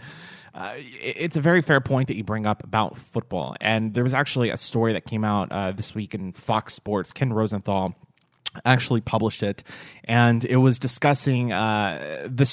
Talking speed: 180 wpm